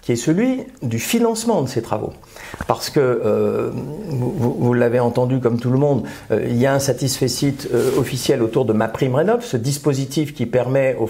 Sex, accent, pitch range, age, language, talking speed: male, French, 120-160 Hz, 50-69, French, 205 wpm